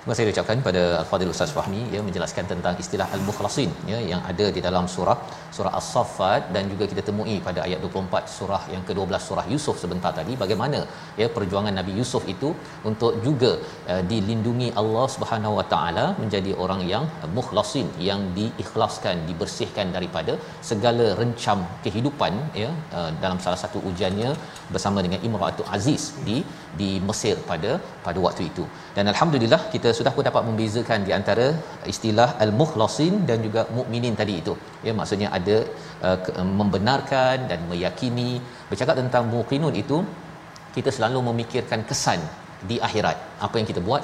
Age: 40-59